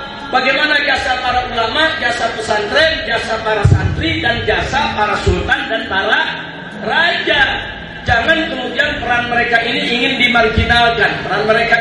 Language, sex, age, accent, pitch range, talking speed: Indonesian, male, 40-59, native, 185-255 Hz, 125 wpm